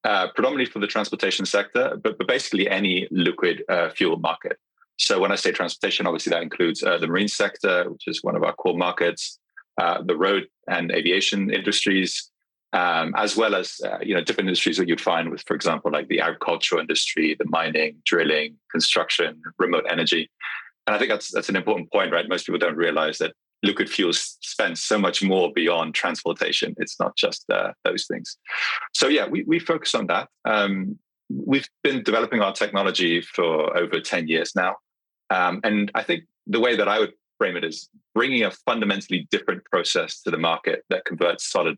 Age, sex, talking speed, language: 30-49, male, 190 wpm, English